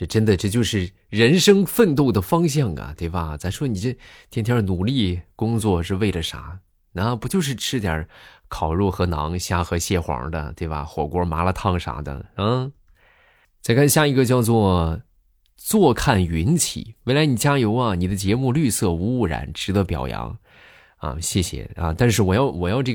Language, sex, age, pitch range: Chinese, male, 20-39, 80-115 Hz